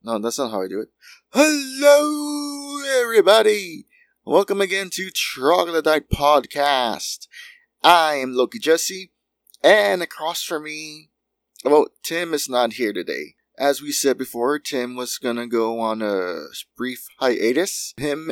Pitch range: 115-155 Hz